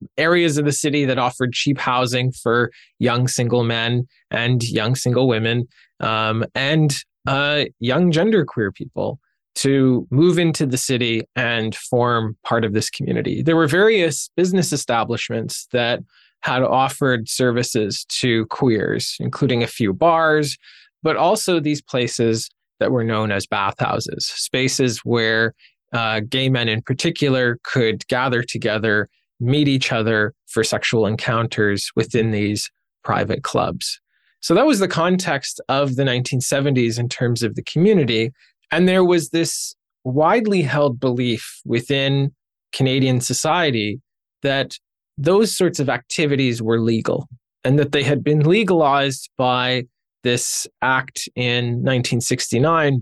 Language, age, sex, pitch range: English, 20-39, male, 115-145 Hz